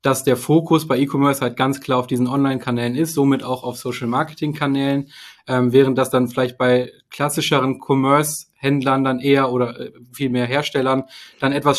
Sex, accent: male, German